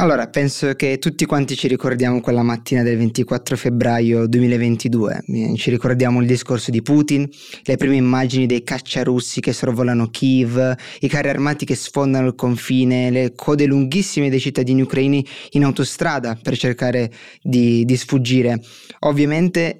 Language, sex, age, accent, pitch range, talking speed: Italian, male, 20-39, native, 125-145 Hz, 145 wpm